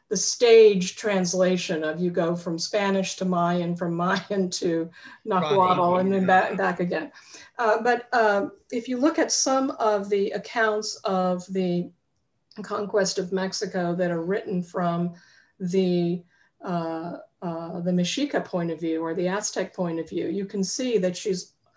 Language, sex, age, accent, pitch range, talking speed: English, female, 50-69, American, 175-210 Hz, 160 wpm